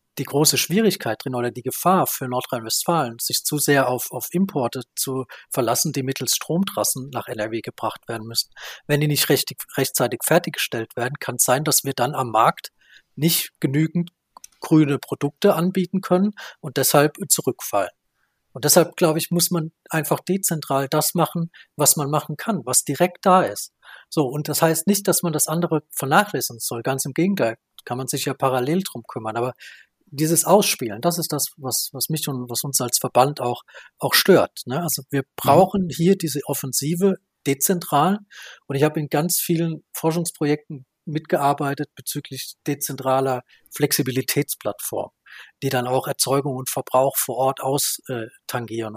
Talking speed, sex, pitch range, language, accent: 160 wpm, male, 130-165 Hz, German, German